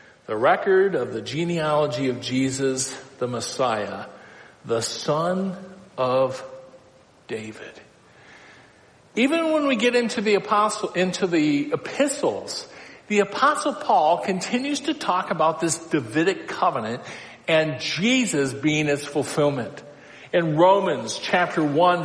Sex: male